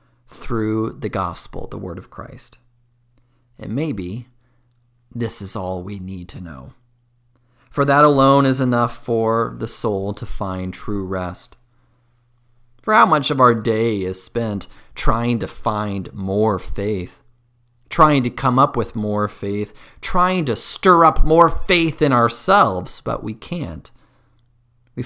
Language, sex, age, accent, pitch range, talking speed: English, male, 30-49, American, 105-120 Hz, 145 wpm